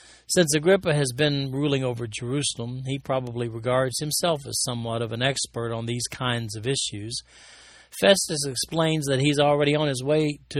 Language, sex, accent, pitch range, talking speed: English, male, American, 130-175 Hz, 170 wpm